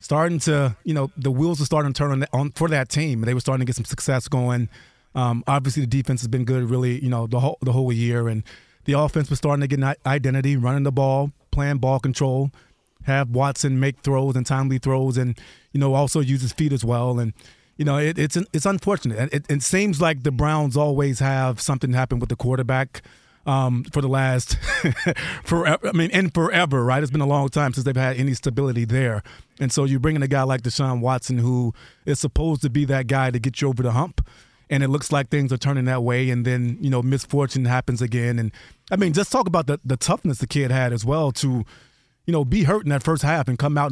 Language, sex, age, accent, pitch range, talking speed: English, male, 30-49, American, 130-145 Hz, 240 wpm